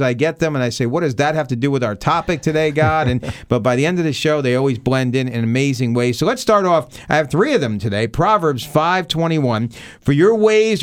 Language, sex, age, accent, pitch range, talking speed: English, male, 50-69, American, 120-160 Hz, 270 wpm